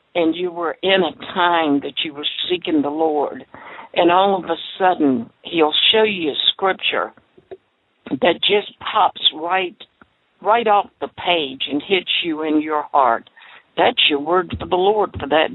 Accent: American